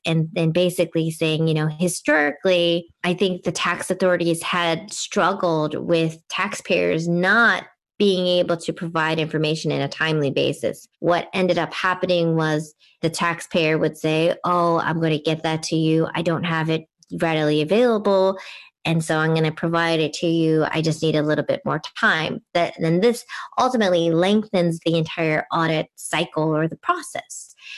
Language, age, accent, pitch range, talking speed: English, 20-39, American, 160-185 Hz, 170 wpm